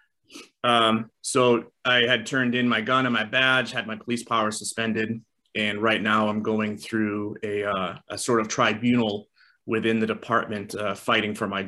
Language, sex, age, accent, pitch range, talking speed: English, male, 30-49, American, 110-125 Hz, 180 wpm